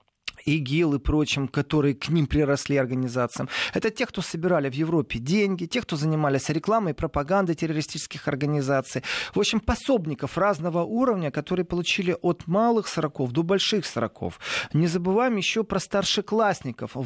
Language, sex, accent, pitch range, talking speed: Russian, male, native, 145-190 Hz, 145 wpm